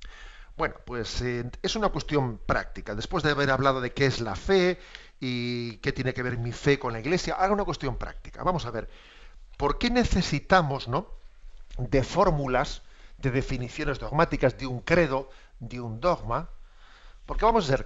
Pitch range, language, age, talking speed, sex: 125-160 Hz, Spanish, 50-69, 170 wpm, male